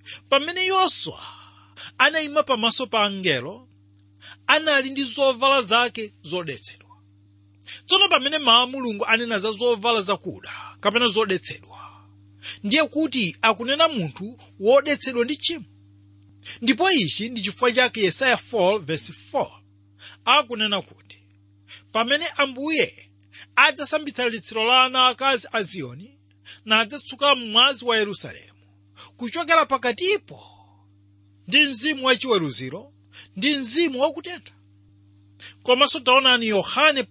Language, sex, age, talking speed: English, male, 40-59, 95 wpm